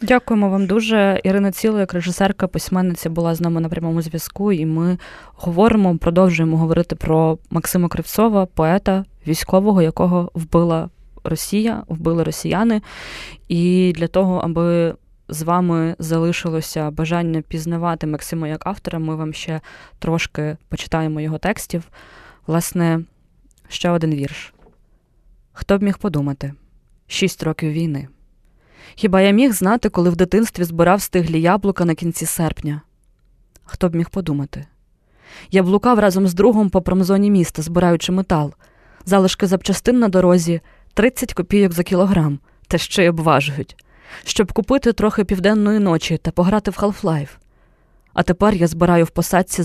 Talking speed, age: 135 wpm, 20-39